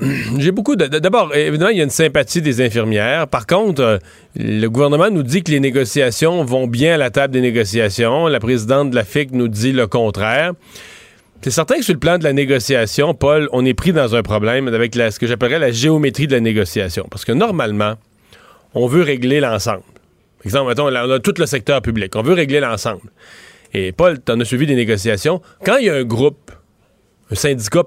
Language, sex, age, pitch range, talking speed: French, male, 30-49, 125-170 Hz, 210 wpm